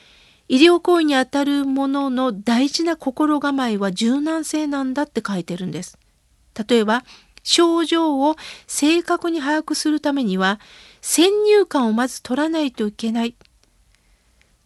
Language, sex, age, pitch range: Japanese, female, 50-69, 235-305 Hz